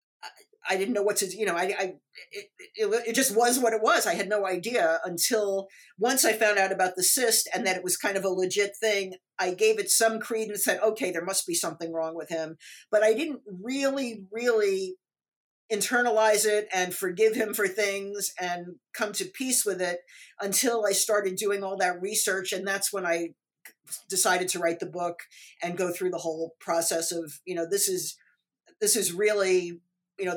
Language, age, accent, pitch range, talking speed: English, 50-69, American, 175-215 Hz, 205 wpm